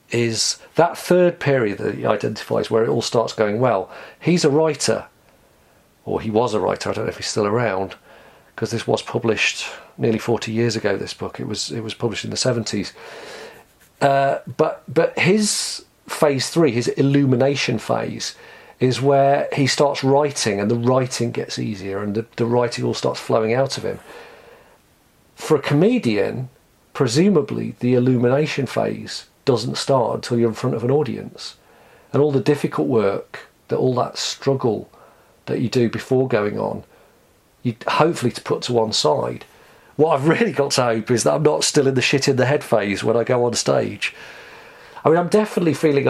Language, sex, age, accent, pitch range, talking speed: English, male, 40-59, British, 115-145 Hz, 185 wpm